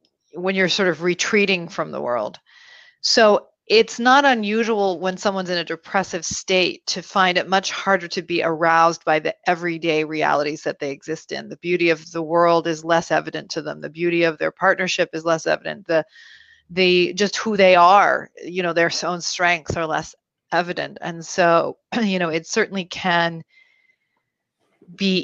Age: 40-59